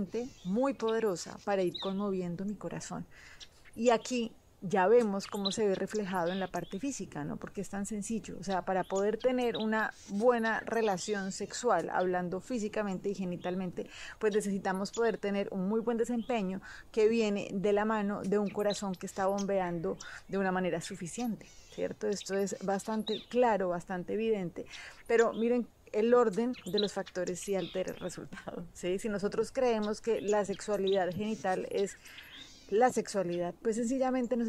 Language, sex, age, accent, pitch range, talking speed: Spanish, female, 30-49, Colombian, 190-225 Hz, 160 wpm